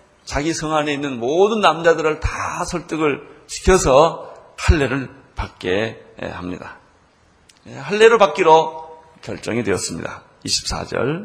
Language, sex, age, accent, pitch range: Korean, male, 40-59, native, 120-170 Hz